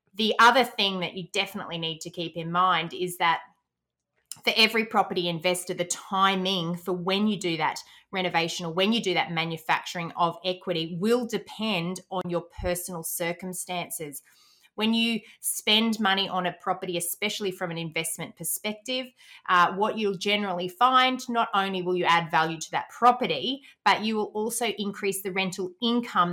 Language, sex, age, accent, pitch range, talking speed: English, female, 30-49, Australian, 175-210 Hz, 165 wpm